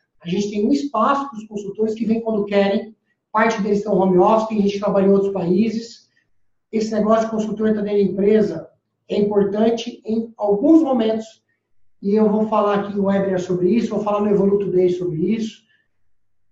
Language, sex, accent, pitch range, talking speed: Portuguese, male, Brazilian, 180-220 Hz, 195 wpm